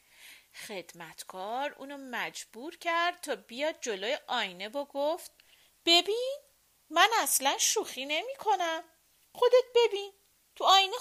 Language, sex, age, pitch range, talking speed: Persian, female, 40-59, 230-380 Hz, 105 wpm